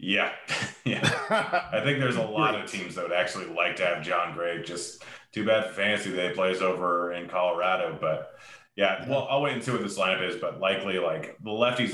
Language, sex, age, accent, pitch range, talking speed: English, male, 30-49, American, 85-105 Hz, 215 wpm